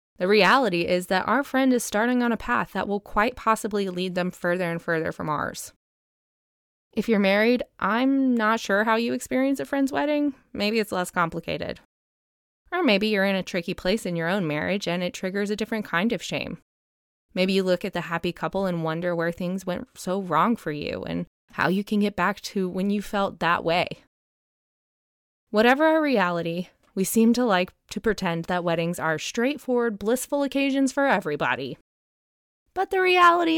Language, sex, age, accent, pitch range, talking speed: English, female, 20-39, American, 180-240 Hz, 190 wpm